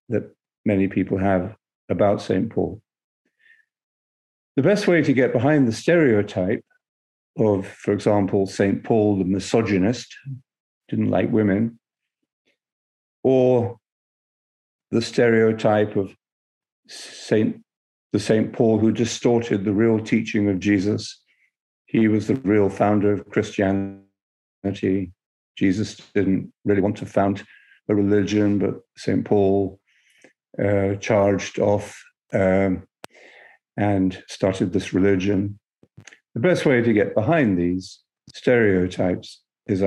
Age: 50-69